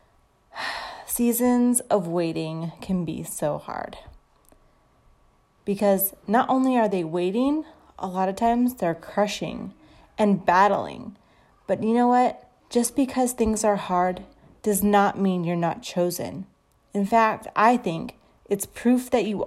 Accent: American